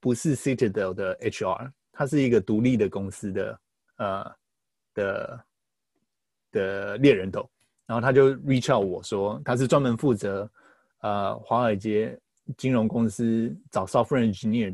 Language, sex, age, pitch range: Chinese, male, 20-39, 110-135 Hz